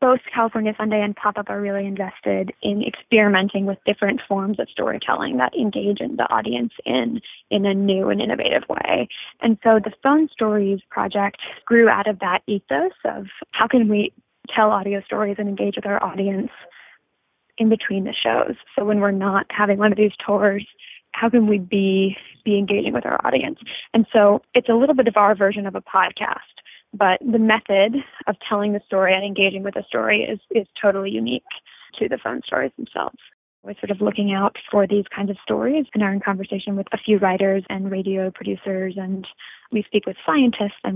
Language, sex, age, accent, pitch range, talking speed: English, female, 20-39, American, 195-220 Hz, 195 wpm